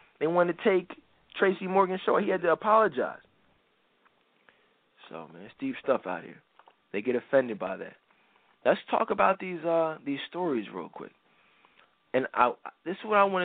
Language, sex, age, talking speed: English, male, 20-39, 175 wpm